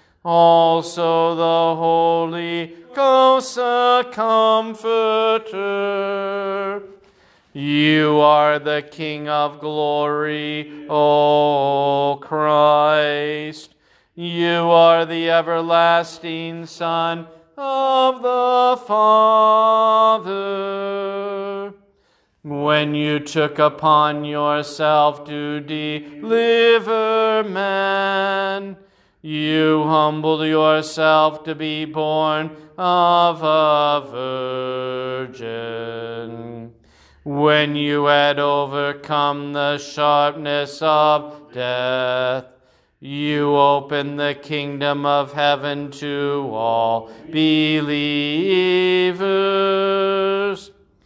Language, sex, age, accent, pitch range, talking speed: English, male, 40-59, American, 145-195 Hz, 65 wpm